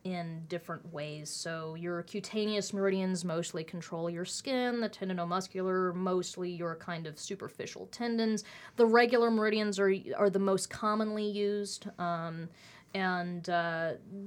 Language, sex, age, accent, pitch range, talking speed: English, female, 30-49, American, 170-205 Hz, 130 wpm